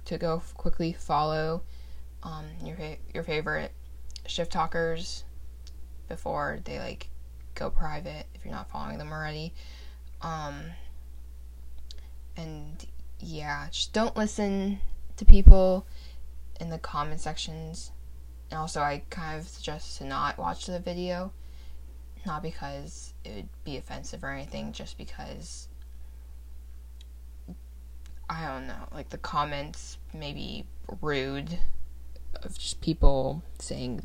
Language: English